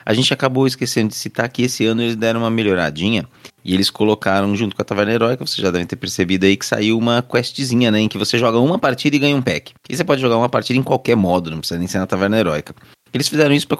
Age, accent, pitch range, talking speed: 20-39, Brazilian, 95-130 Hz, 270 wpm